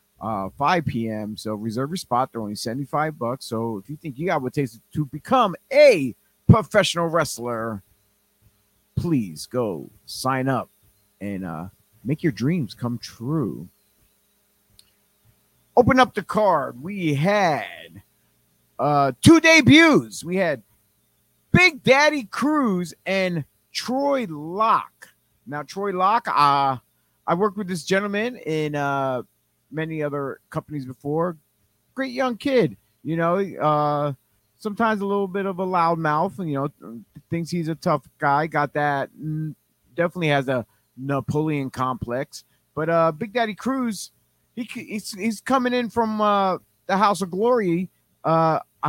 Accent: American